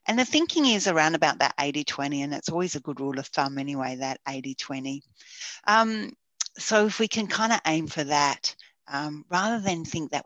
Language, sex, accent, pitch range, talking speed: English, female, Australian, 140-215 Hz, 200 wpm